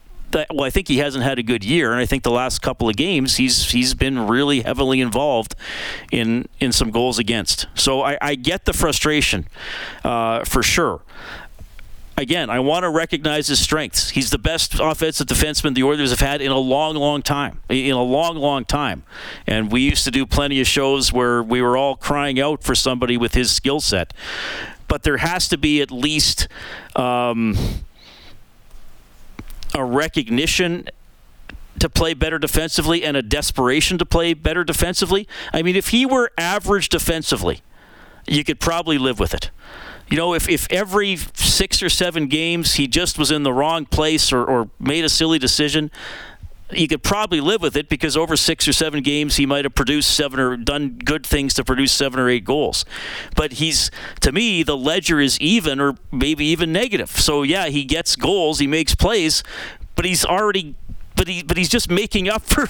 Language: English